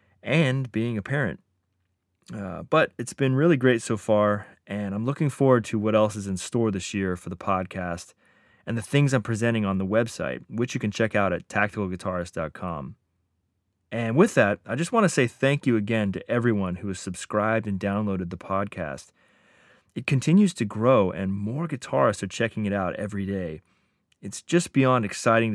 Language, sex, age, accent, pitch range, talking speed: English, male, 30-49, American, 95-125 Hz, 185 wpm